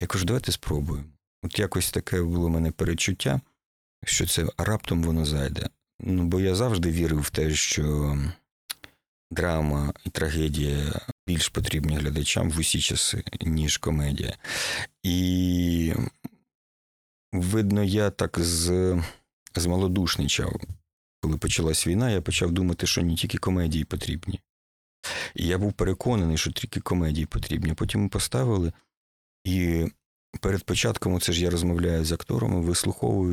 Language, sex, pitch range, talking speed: Ukrainian, male, 80-95 Hz, 130 wpm